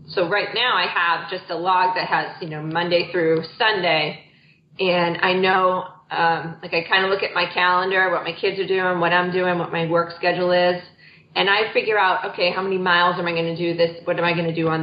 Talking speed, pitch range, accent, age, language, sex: 245 wpm, 170-205 Hz, American, 30-49, English, female